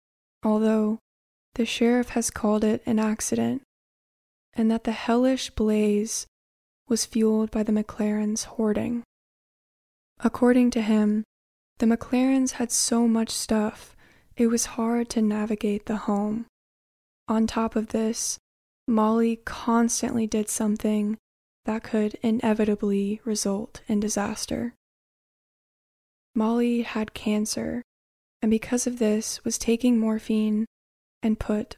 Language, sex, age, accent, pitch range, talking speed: English, female, 20-39, American, 215-235 Hz, 115 wpm